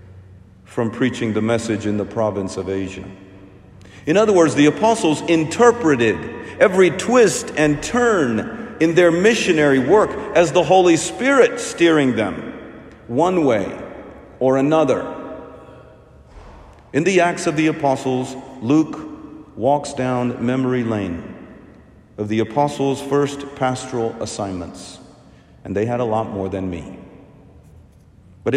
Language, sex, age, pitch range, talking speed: English, male, 50-69, 105-145 Hz, 125 wpm